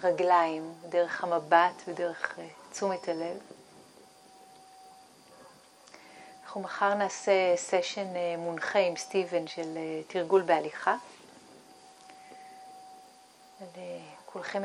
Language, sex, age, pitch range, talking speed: Hebrew, female, 30-49, 170-215 Hz, 80 wpm